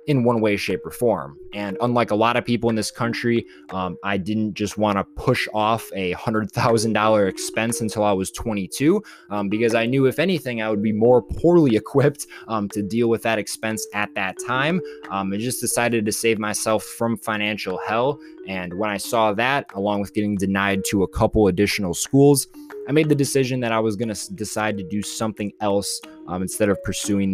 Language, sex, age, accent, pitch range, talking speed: English, male, 20-39, American, 100-125 Hz, 200 wpm